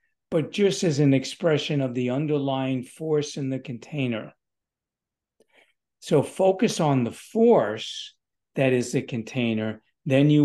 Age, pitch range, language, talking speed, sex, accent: 50-69, 130-165 Hz, English, 130 wpm, male, American